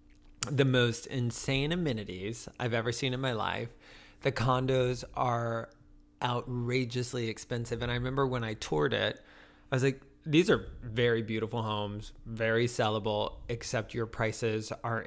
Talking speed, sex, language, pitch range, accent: 145 wpm, male, English, 110-130 Hz, American